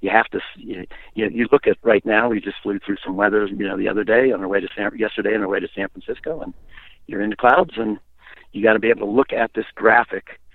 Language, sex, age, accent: English, male, 60-79, American